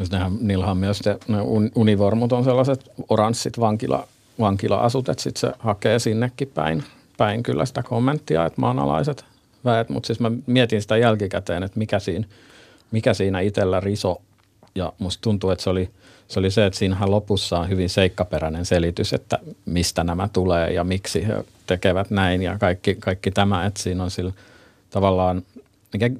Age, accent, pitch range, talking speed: 50-69, native, 90-105 Hz, 165 wpm